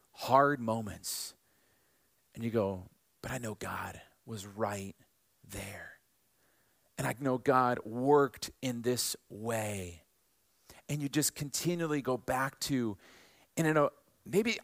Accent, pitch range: American, 110-140 Hz